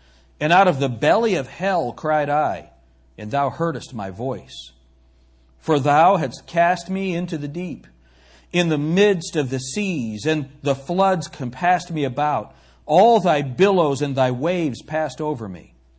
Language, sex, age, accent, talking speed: English, male, 50-69, American, 160 wpm